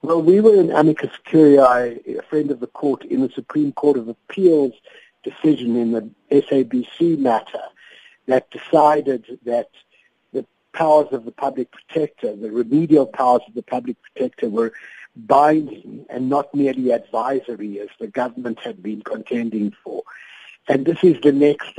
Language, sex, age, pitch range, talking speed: English, male, 60-79, 120-145 Hz, 155 wpm